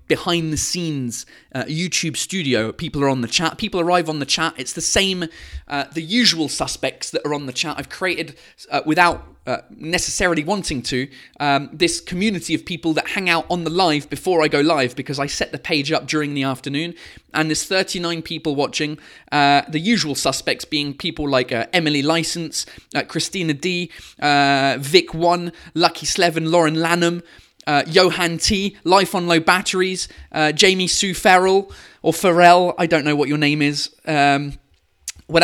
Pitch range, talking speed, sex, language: 145-180 Hz, 175 wpm, male, English